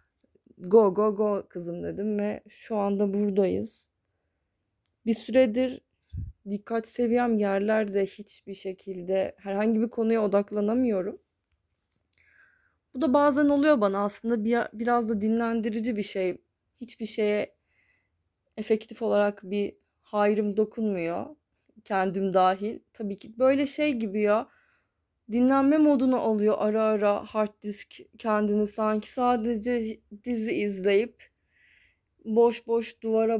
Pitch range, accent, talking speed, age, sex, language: 200-235 Hz, native, 110 wpm, 20-39, female, Turkish